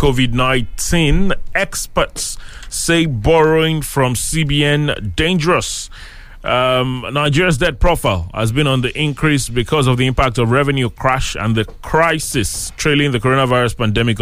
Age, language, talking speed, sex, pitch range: 30-49, English, 125 wpm, male, 110-145 Hz